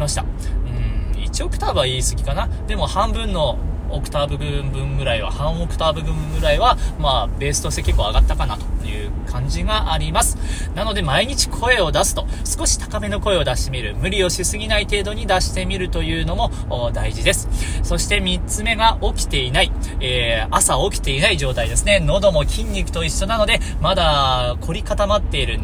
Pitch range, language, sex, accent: 80-115 Hz, Japanese, male, native